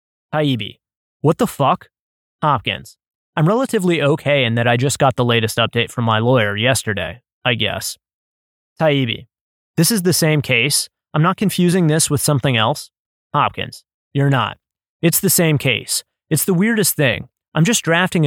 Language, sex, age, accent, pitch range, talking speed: English, male, 20-39, American, 120-165 Hz, 160 wpm